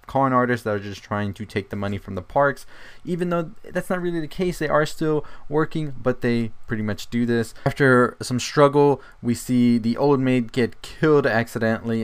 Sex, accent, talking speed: male, American, 205 wpm